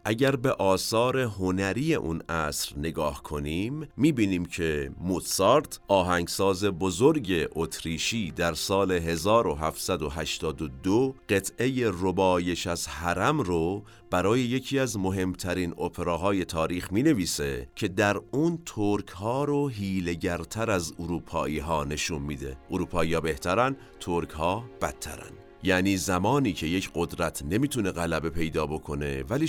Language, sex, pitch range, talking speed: Persian, male, 85-115 Hz, 115 wpm